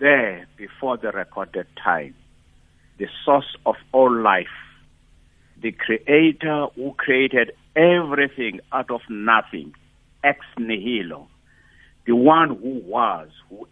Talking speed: 110 wpm